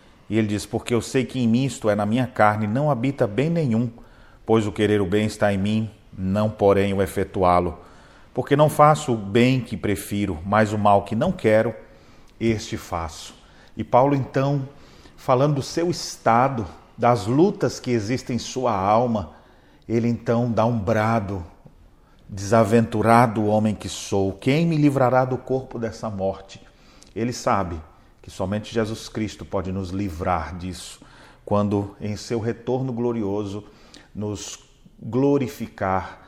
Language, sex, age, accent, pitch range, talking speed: Portuguese, male, 40-59, Brazilian, 100-120 Hz, 155 wpm